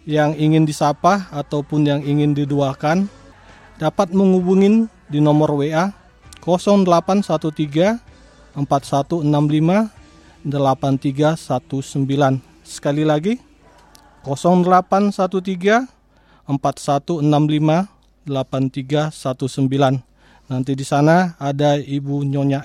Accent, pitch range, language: native, 140-180 Hz, Indonesian